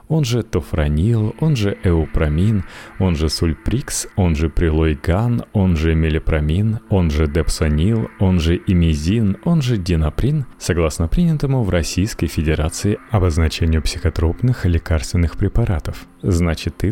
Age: 30-49